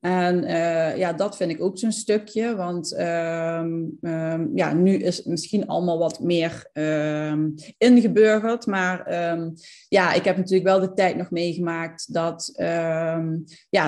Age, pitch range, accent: 30-49, 170-215 Hz, Dutch